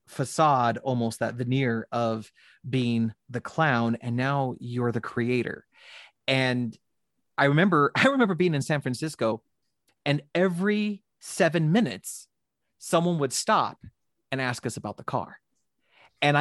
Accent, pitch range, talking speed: American, 125-160 Hz, 130 wpm